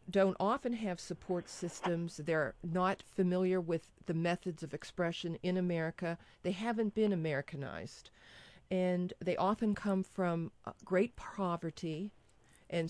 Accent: American